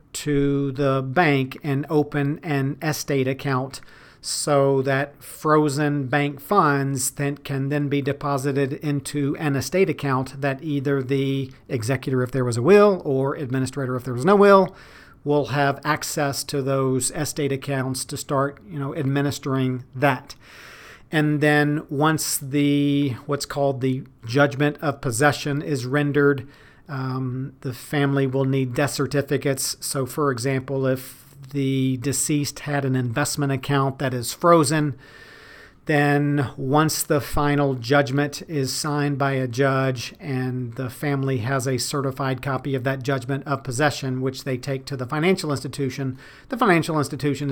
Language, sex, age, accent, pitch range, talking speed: English, male, 40-59, American, 135-145 Hz, 145 wpm